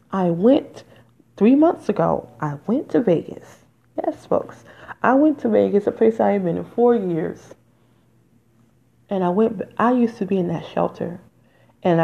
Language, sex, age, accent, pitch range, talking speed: English, female, 30-49, American, 155-210 Hz, 170 wpm